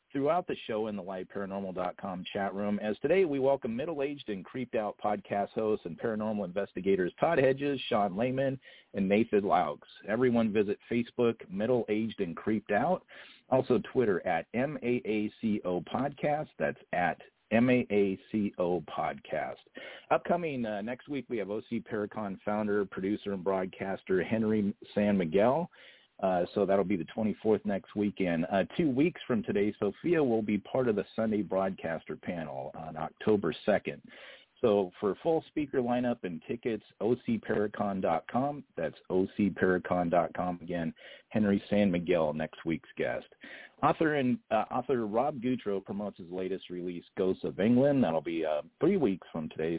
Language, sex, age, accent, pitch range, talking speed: English, male, 50-69, American, 95-120 Hz, 145 wpm